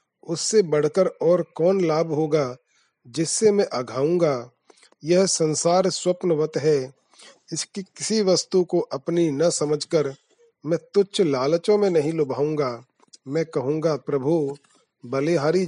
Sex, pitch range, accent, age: male, 150-175 Hz, native, 40-59